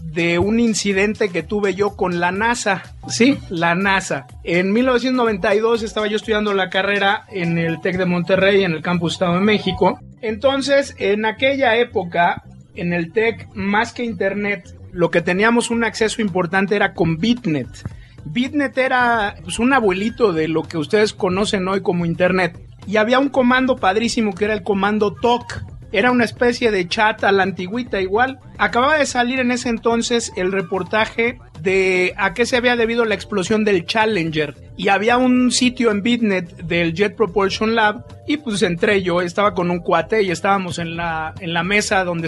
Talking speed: 175 wpm